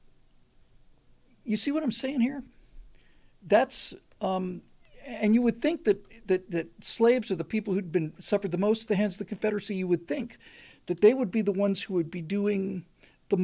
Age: 50-69